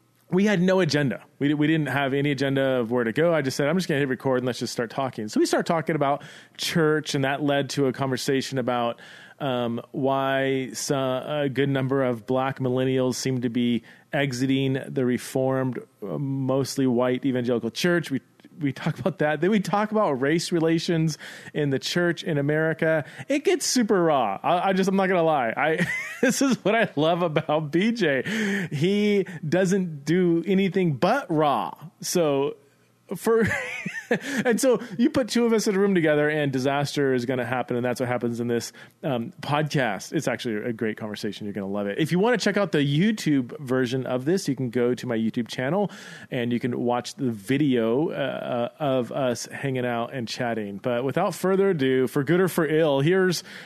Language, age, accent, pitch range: English, 30-49, American, 130-180 Hz